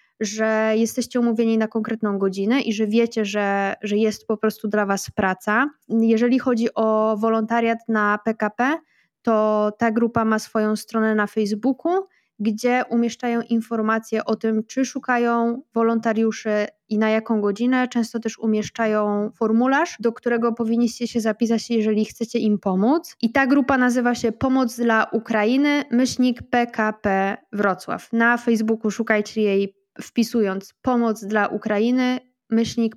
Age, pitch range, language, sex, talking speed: 20-39, 215-235 Hz, Polish, female, 140 wpm